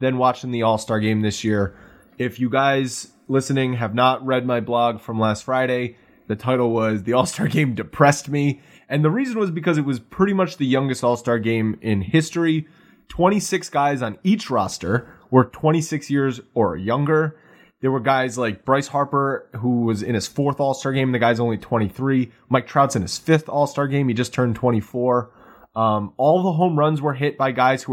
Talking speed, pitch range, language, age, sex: 195 wpm, 115-145 Hz, English, 20-39, male